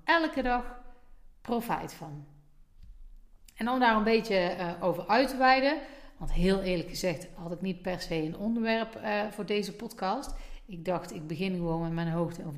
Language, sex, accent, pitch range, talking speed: Dutch, female, Dutch, 175-245 Hz, 180 wpm